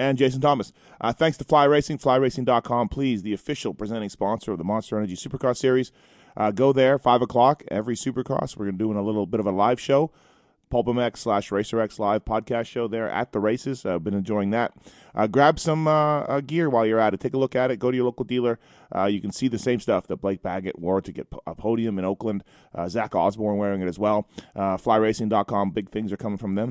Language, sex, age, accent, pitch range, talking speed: English, male, 30-49, American, 105-130 Hz, 235 wpm